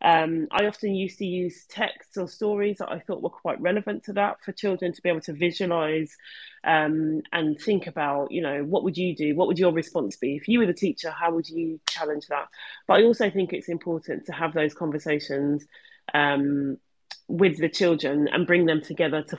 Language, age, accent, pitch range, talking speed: English, 30-49, British, 150-185 Hz, 210 wpm